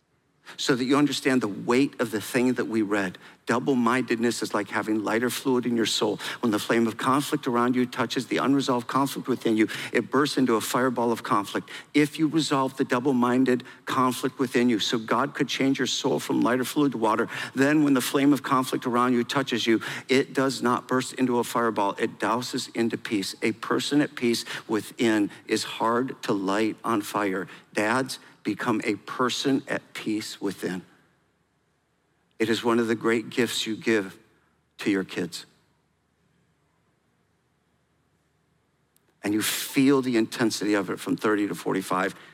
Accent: American